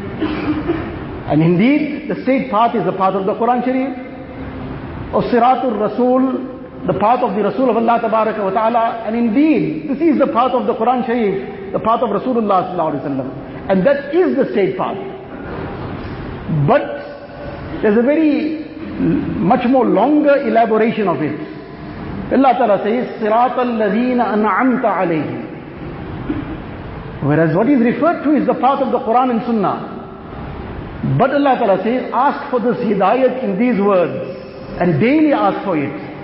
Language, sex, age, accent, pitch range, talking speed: English, male, 50-69, Indian, 200-255 Hz, 155 wpm